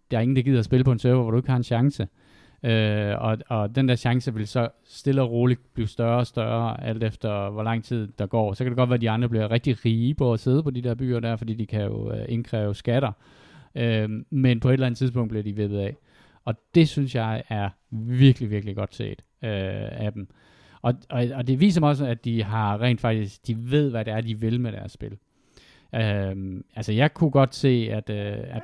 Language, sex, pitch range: Danish, male, 105-125 Hz